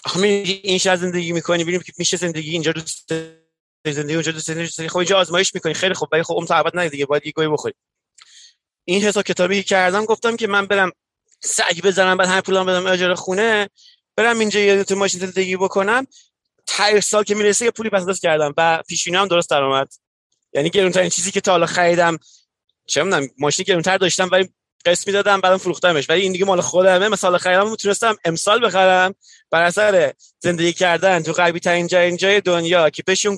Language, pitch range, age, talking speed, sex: Persian, 165-195 Hz, 30-49, 180 wpm, male